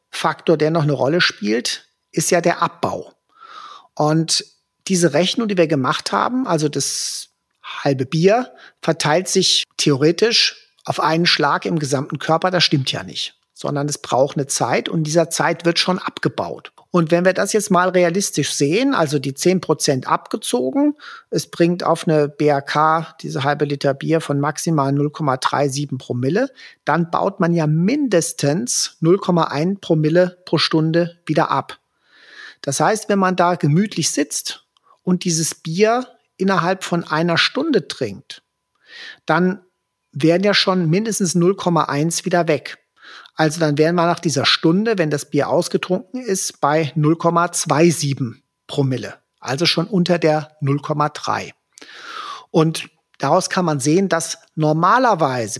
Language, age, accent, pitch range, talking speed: German, 50-69, German, 150-185 Hz, 140 wpm